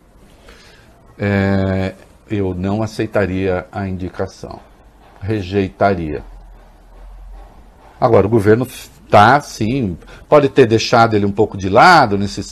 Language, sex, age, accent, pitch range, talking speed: English, male, 60-79, Brazilian, 95-125 Hz, 95 wpm